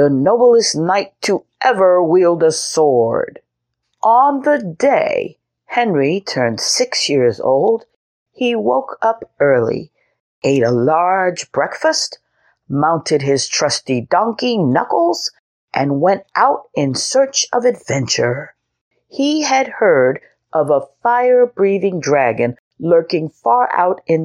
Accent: American